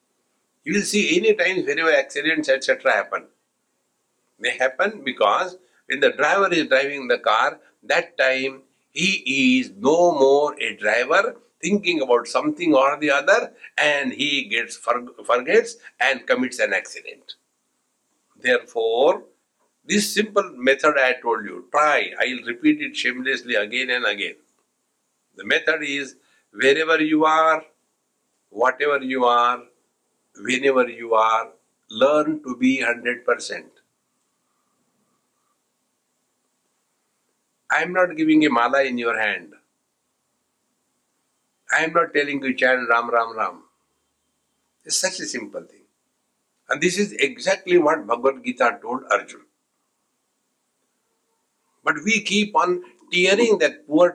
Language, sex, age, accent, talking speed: English, male, 60-79, Indian, 125 wpm